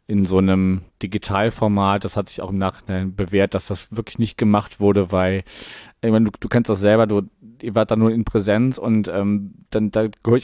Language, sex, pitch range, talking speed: German, male, 95-105 Hz, 205 wpm